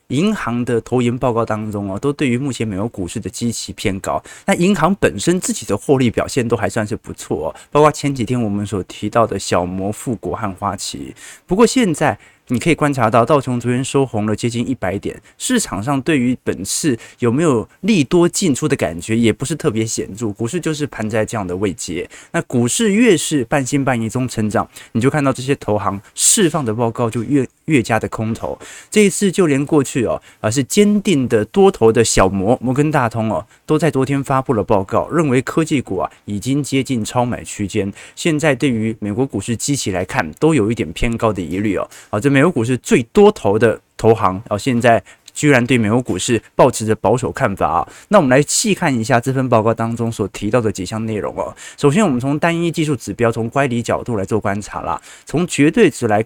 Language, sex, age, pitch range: Chinese, male, 20-39, 110-145 Hz